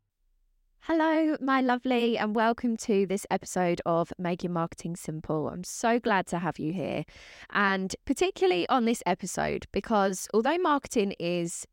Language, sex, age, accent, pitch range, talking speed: English, female, 20-39, British, 175-230 Hz, 150 wpm